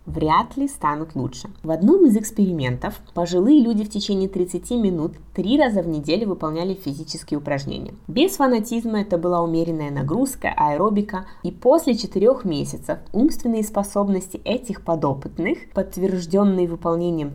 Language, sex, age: Russian, female, 20-39